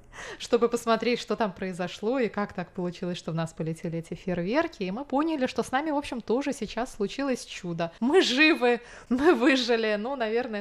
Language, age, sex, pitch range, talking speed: Russian, 20-39, female, 180-230 Hz, 185 wpm